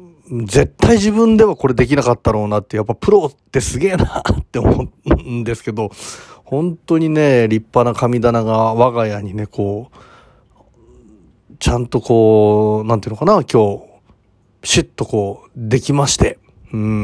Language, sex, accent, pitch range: Japanese, male, native, 110-145 Hz